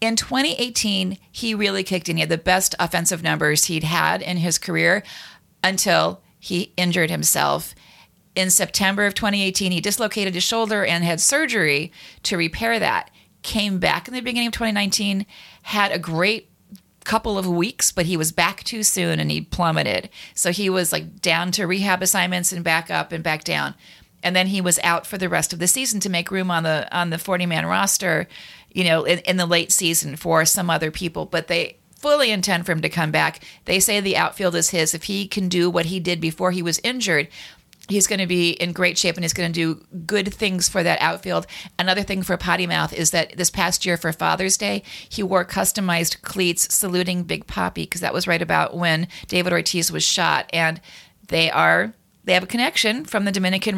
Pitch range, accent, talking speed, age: 170-200 Hz, American, 205 wpm, 40-59